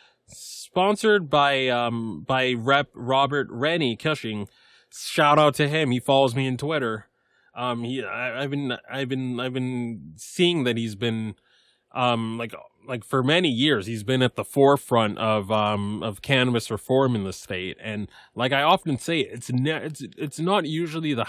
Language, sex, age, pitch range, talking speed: English, male, 20-39, 110-140 Hz, 170 wpm